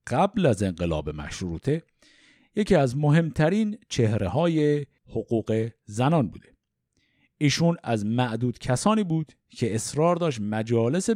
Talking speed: 115 wpm